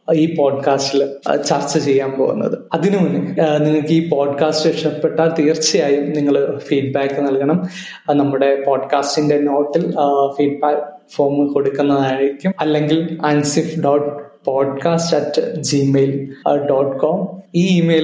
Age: 20-39